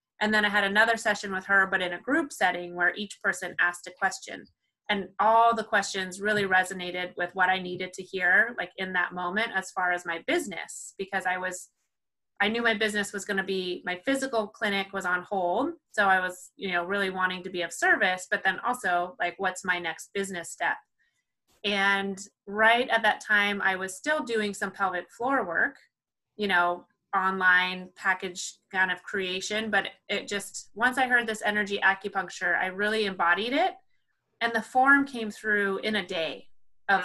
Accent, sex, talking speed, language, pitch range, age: American, female, 190 wpm, English, 185-215 Hz, 20-39